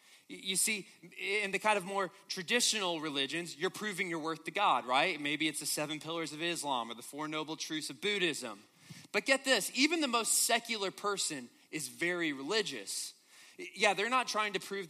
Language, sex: English, male